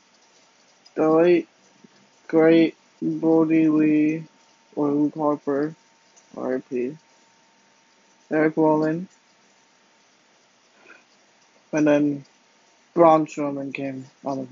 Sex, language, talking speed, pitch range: male, English, 80 wpm, 145-160 Hz